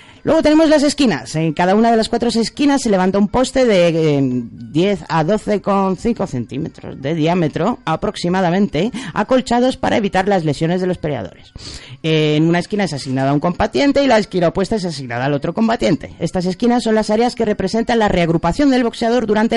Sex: female